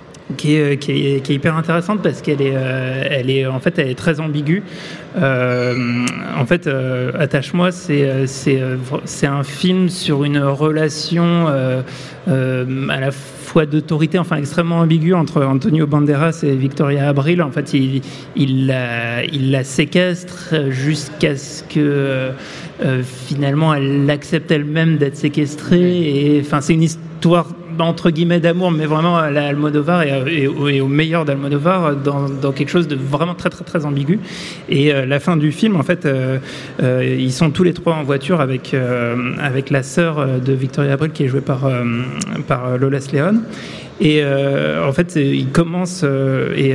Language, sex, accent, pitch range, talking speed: French, male, French, 135-165 Hz, 165 wpm